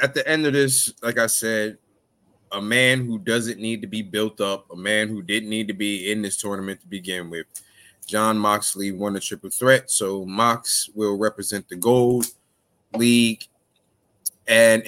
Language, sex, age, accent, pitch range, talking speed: English, male, 20-39, American, 100-130 Hz, 180 wpm